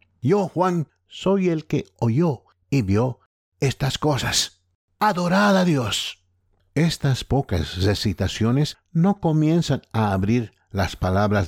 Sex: male